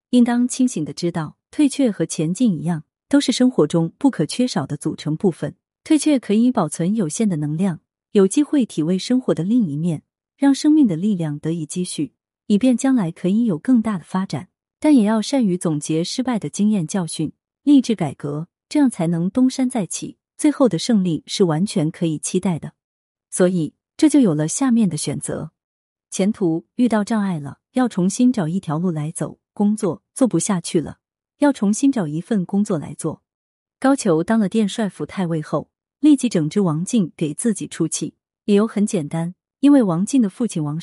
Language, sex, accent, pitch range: Chinese, female, native, 160-235 Hz